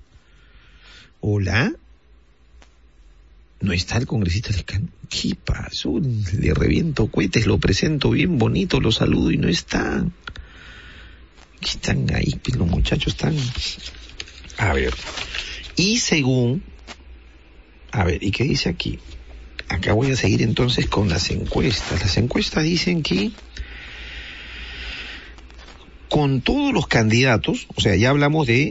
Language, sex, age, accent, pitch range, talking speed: Spanish, male, 50-69, Mexican, 100-145 Hz, 115 wpm